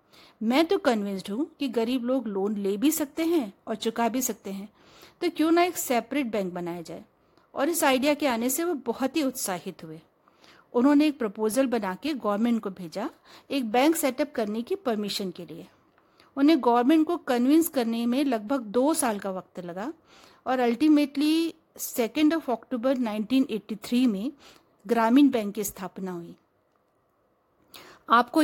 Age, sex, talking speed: 50-69, female, 165 wpm